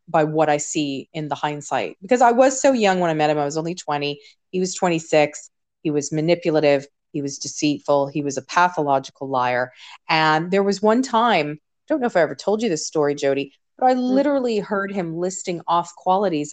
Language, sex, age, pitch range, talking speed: English, female, 30-49, 150-205 Hz, 210 wpm